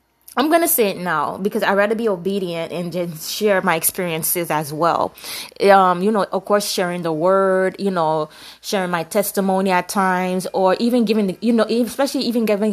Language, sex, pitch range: English, female, 195-245 Hz